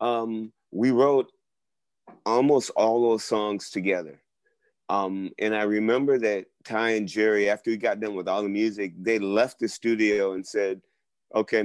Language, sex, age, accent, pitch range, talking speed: English, male, 30-49, American, 100-125 Hz, 160 wpm